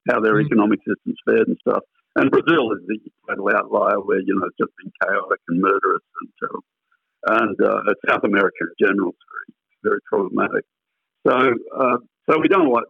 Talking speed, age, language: 175 wpm, 60-79, English